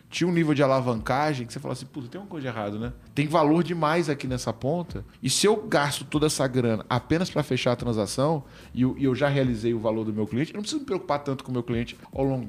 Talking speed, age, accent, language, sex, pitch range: 260 wpm, 20-39, Brazilian, Portuguese, male, 115-150 Hz